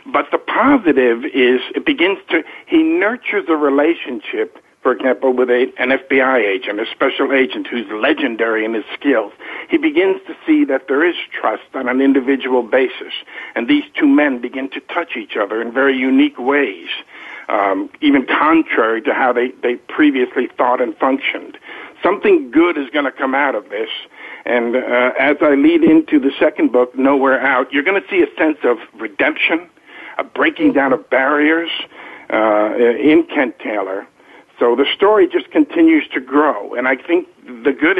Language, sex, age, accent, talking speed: English, male, 60-79, American, 175 wpm